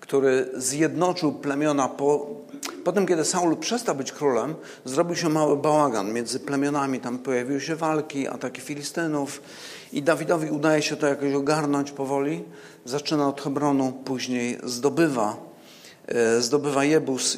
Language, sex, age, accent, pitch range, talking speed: Polish, male, 50-69, native, 125-150 Hz, 130 wpm